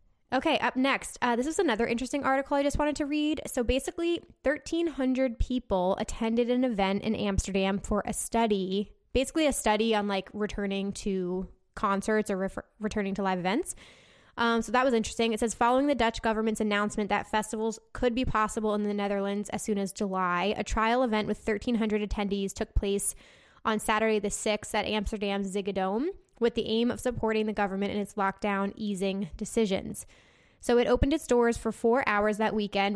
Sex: female